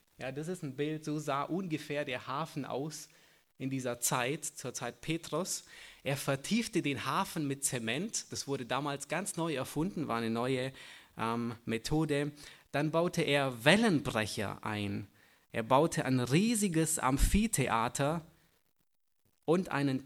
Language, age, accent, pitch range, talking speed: German, 20-39, German, 125-165 Hz, 140 wpm